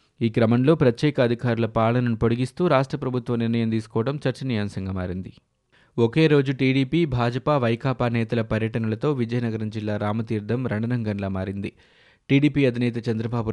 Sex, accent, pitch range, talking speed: male, native, 110-130 Hz, 120 wpm